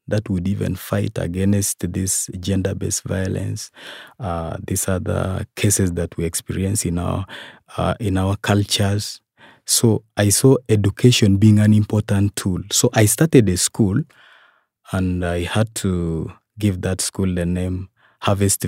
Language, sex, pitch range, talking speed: English, male, 95-110 Hz, 140 wpm